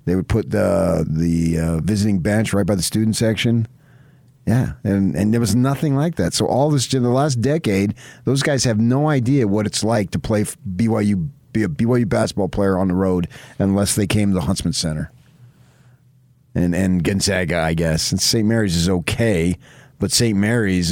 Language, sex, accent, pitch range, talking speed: English, male, American, 95-135 Hz, 190 wpm